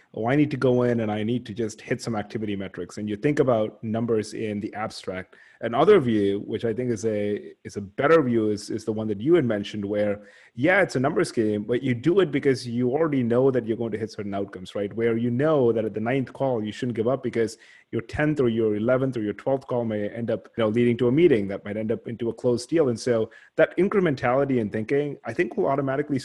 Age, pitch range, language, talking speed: 30-49, 110-130 Hz, English, 260 wpm